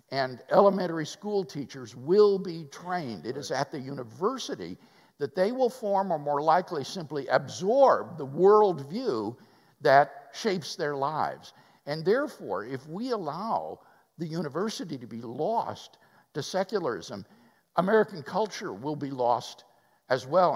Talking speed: 135 wpm